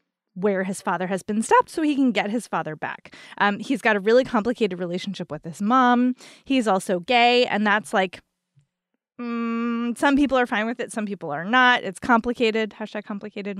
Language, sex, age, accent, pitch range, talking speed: English, female, 20-39, American, 195-250 Hz, 195 wpm